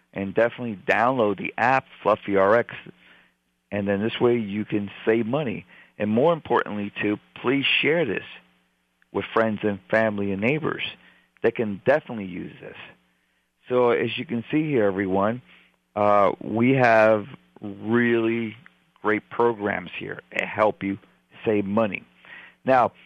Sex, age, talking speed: male, 50-69, 140 wpm